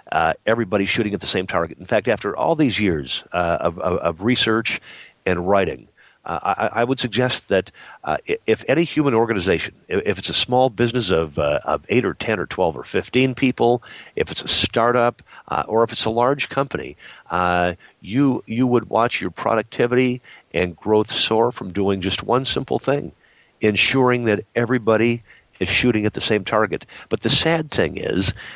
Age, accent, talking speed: 50-69, American, 190 wpm